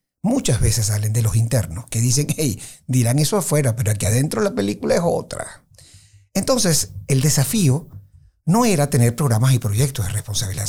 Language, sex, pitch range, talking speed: Spanish, male, 115-150 Hz, 170 wpm